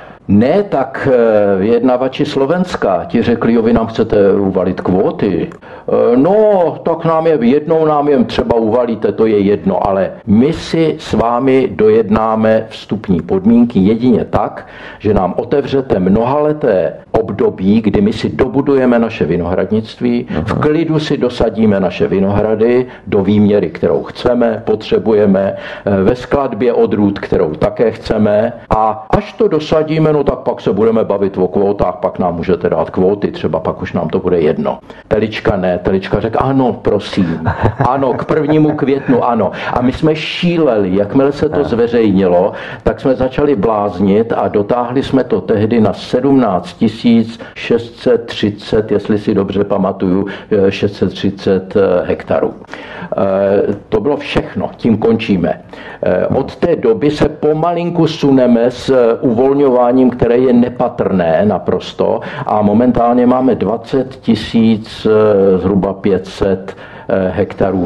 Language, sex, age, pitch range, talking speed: Czech, male, 60-79, 110-150 Hz, 135 wpm